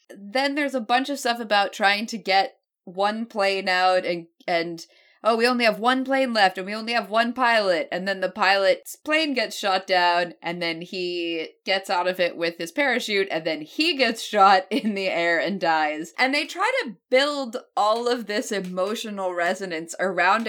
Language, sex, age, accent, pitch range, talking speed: English, female, 20-39, American, 185-245 Hz, 195 wpm